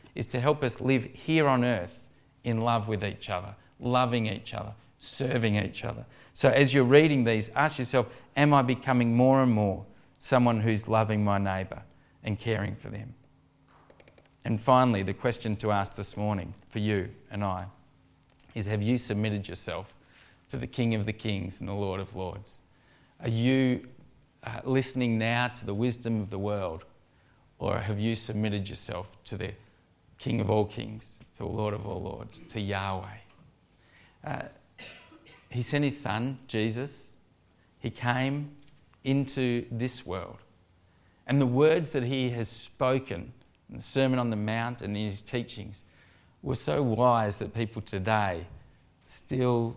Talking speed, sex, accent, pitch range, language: 160 wpm, male, Australian, 105-125 Hz, English